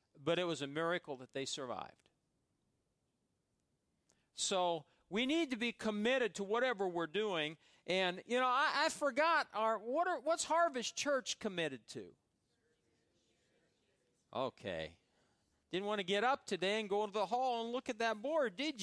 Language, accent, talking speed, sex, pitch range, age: English, American, 160 wpm, male, 160-235 Hz, 40-59